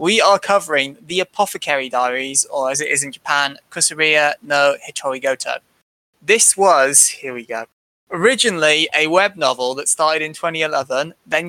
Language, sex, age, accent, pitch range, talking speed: English, male, 20-39, British, 140-185 Hz, 155 wpm